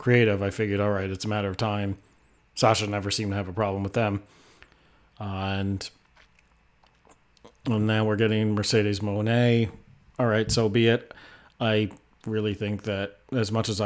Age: 30-49